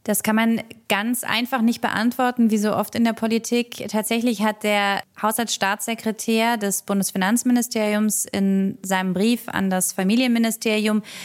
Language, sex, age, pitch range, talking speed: German, female, 20-39, 190-220 Hz, 135 wpm